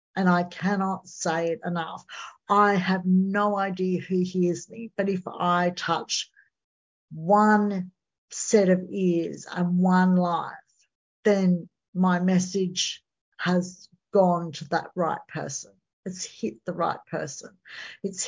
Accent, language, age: Australian, English, 60-79